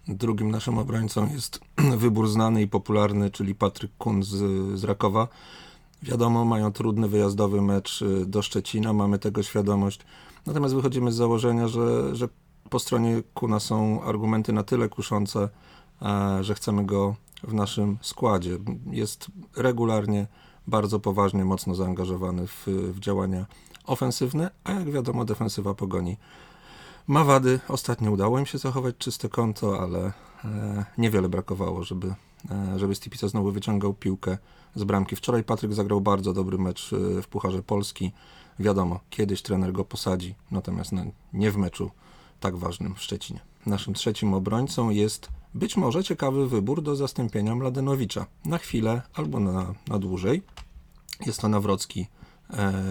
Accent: native